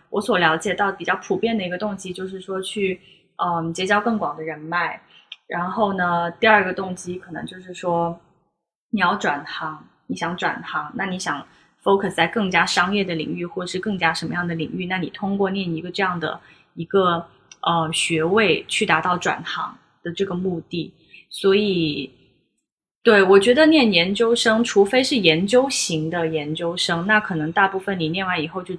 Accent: native